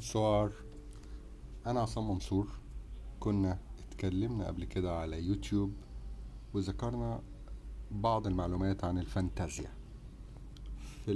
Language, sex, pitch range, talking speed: Arabic, male, 95-110 Hz, 85 wpm